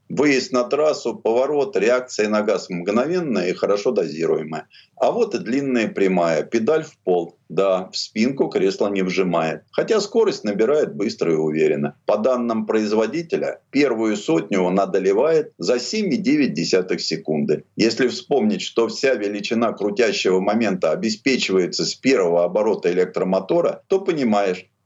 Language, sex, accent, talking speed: Russian, male, native, 135 wpm